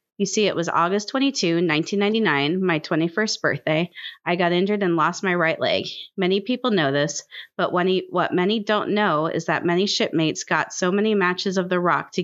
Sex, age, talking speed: female, 30-49, 200 wpm